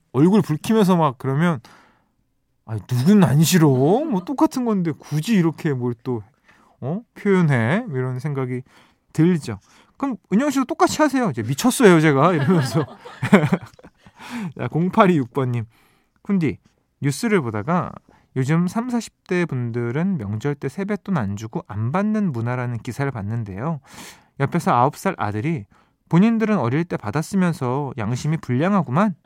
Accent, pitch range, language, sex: native, 125-190 Hz, Korean, male